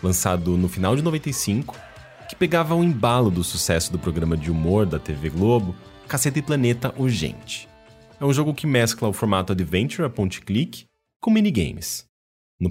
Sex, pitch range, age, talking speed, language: male, 85-125 Hz, 30-49, 165 wpm, English